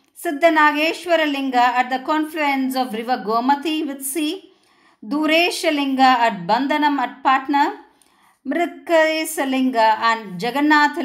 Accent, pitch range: native, 260-315 Hz